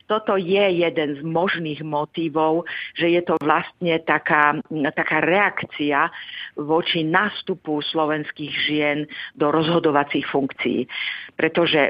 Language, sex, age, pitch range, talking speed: Czech, female, 50-69, 150-170 Hz, 105 wpm